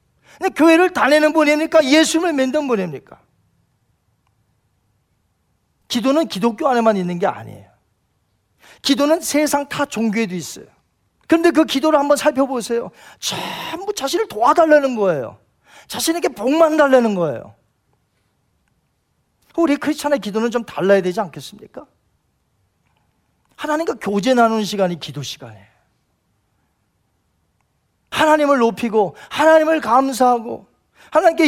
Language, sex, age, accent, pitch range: Korean, male, 40-59, native, 180-295 Hz